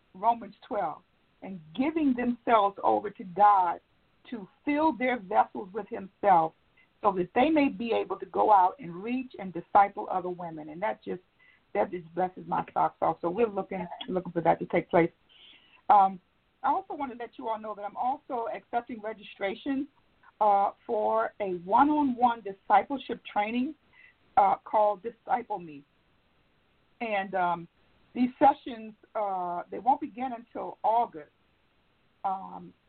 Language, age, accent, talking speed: English, 50-69, American, 150 wpm